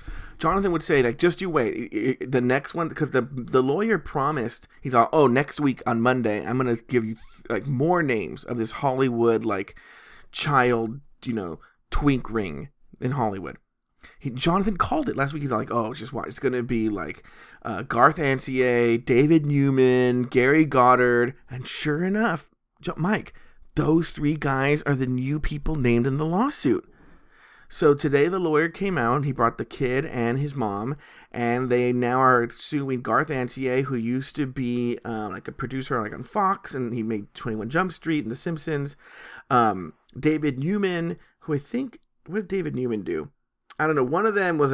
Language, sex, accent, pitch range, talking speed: English, male, American, 120-155 Hz, 185 wpm